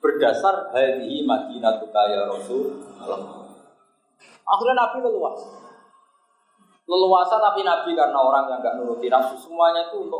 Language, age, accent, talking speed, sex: Indonesian, 30-49, native, 120 wpm, male